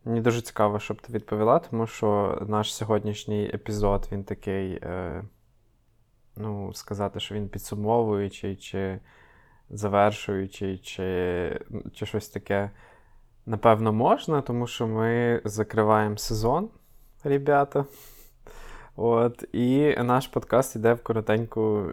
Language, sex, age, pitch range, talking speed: Ukrainian, male, 20-39, 105-125 Hz, 110 wpm